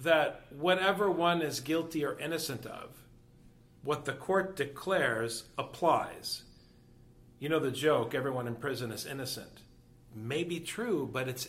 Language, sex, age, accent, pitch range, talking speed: English, male, 40-59, American, 120-175 Hz, 135 wpm